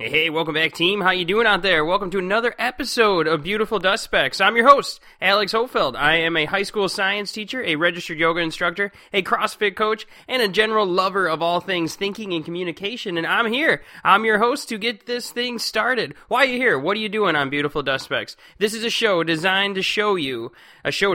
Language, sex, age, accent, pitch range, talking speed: English, male, 20-39, American, 170-230 Hz, 225 wpm